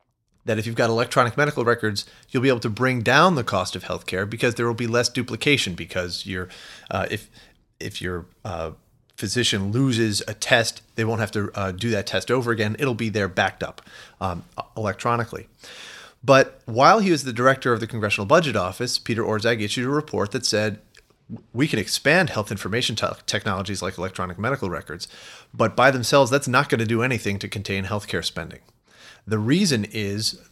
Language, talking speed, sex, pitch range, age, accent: English, 190 wpm, male, 100-125 Hz, 30-49, American